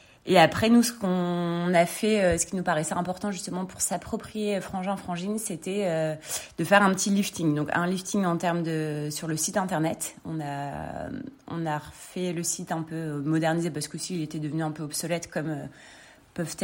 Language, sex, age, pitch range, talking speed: French, female, 30-49, 155-185 Hz, 190 wpm